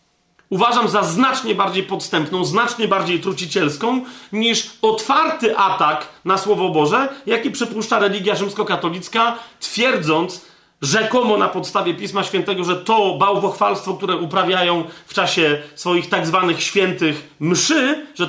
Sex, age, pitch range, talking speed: male, 30-49, 180-225 Hz, 120 wpm